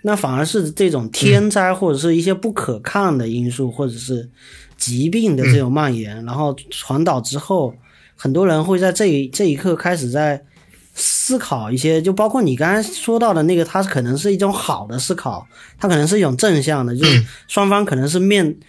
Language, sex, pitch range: Chinese, male, 130-190 Hz